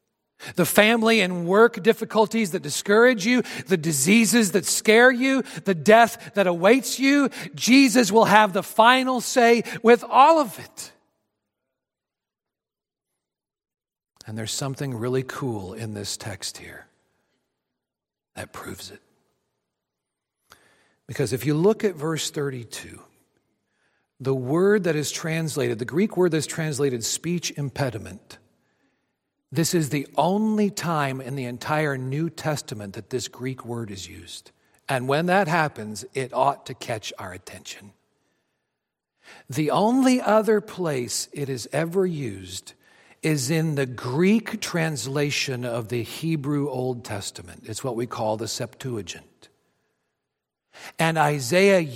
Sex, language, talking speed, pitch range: male, English, 130 wpm, 125-195 Hz